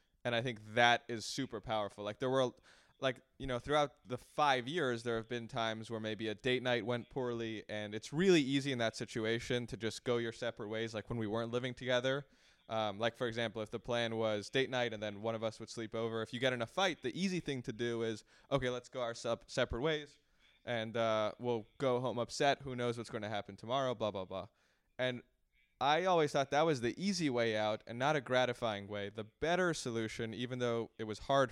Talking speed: 235 wpm